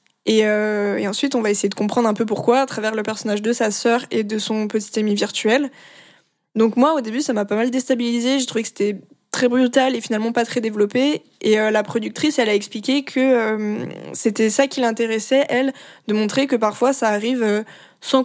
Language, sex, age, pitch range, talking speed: French, female, 20-39, 215-255 Hz, 215 wpm